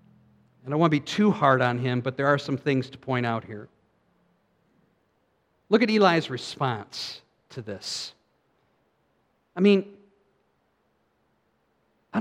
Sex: male